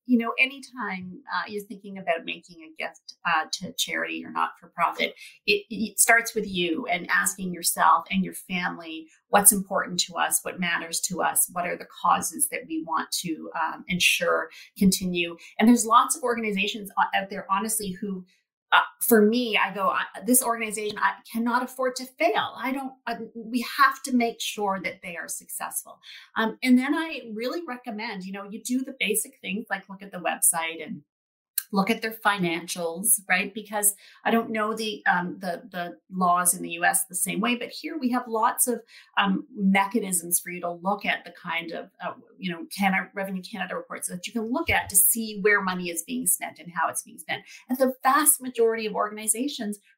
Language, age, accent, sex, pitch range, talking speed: English, 30-49, American, female, 185-245 Hz, 200 wpm